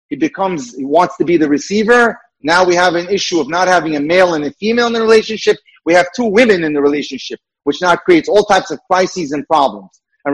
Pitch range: 170-225 Hz